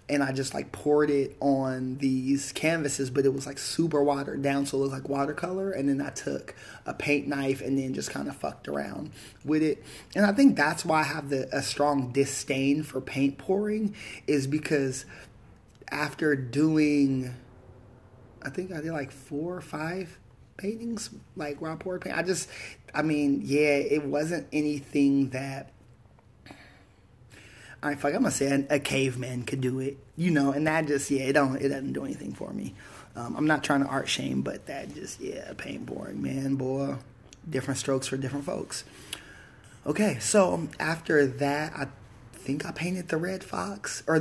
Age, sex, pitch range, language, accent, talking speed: 30-49, male, 135-155 Hz, English, American, 180 wpm